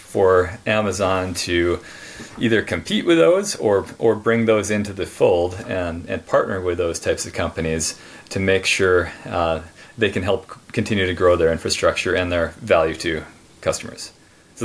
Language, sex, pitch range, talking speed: English, male, 85-105 Hz, 165 wpm